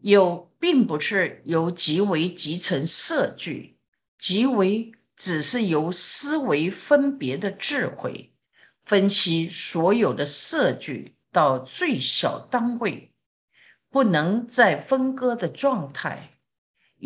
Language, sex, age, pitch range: Chinese, female, 50-69, 165-240 Hz